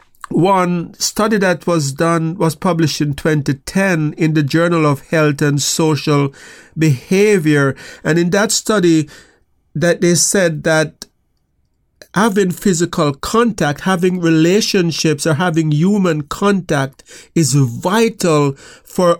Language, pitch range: English, 155-190 Hz